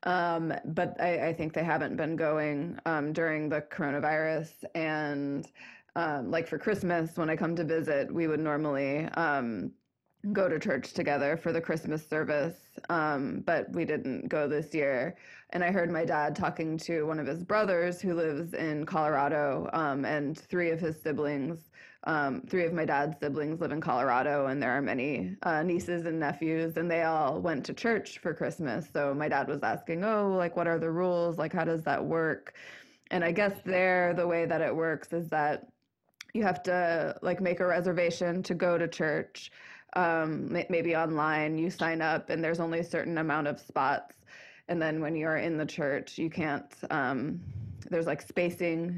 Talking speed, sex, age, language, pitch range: 185 wpm, female, 20-39, English, 150-170 Hz